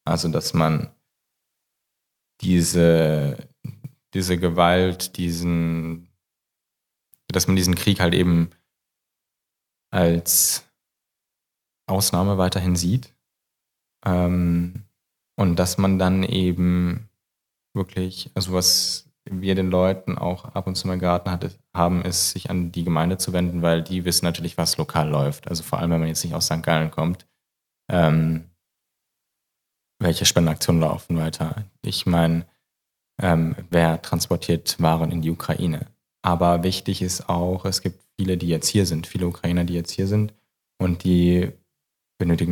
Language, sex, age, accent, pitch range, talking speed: German, male, 20-39, German, 85-90 Hz, 135 wpm